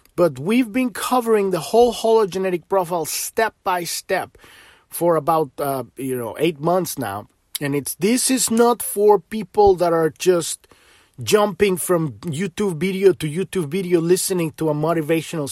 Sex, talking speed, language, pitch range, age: male, 155 wpm, English, 150-200 Hz, 30-49